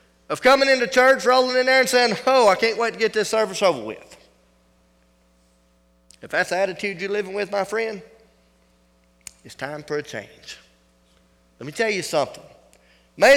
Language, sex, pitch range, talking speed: English, male, 125-170 Hz, 175 wpm